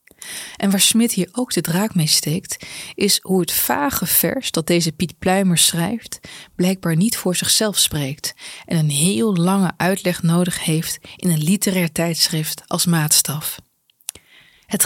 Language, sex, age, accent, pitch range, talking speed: Dutch, female, 20-39, Dutch, 160-190 Hz, 155 wpm